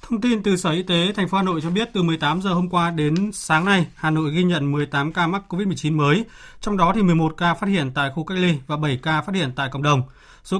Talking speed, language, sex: 280 wpm, Vietnamese, male